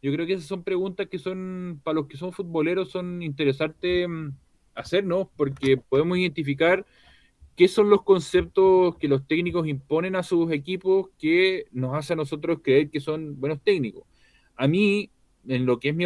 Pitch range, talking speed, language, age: 135-185 Hz, 175 wpm, Spanish, 20-39